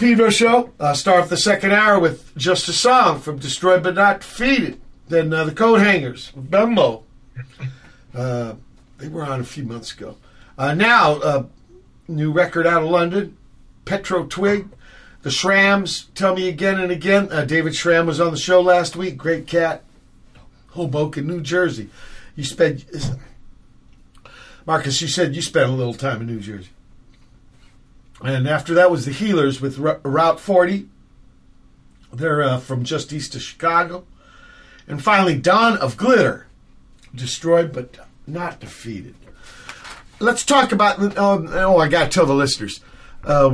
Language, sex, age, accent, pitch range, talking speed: English, male, 50-69, American, 135-185 Hz, 155 wpm